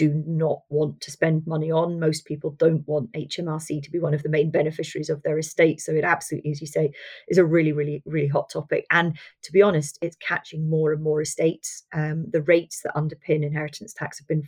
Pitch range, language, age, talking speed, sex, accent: 150-170 Hz, English, 40-59, 225 wpm, female, British